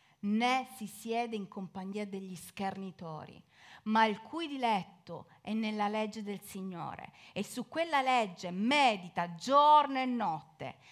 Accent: native